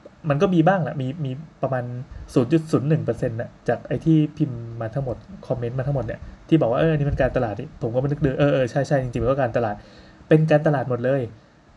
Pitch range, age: 120-150 Hz, 20-39